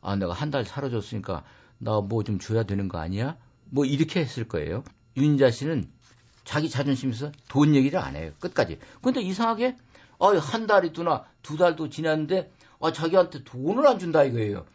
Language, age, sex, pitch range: Korean, 50-69, male, 110-155 Hz